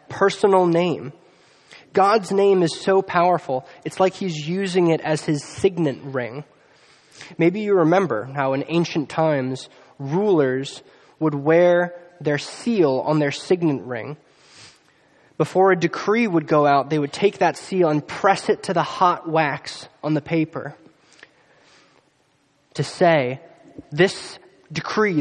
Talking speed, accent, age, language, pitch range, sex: 135 wpm, American, 20-39, English, 145-180 Hz, male